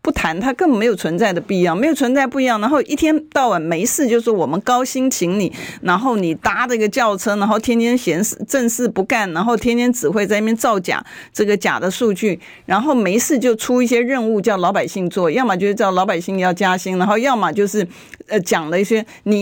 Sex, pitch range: female, 180-245 Hz